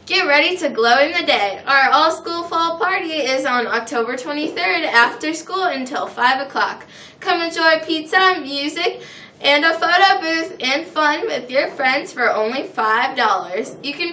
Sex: female